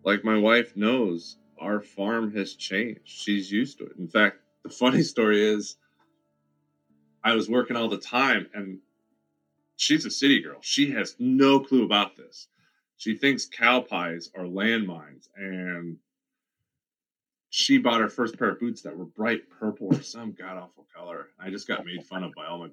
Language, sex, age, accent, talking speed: English, male, 30-49, American, 175 wpm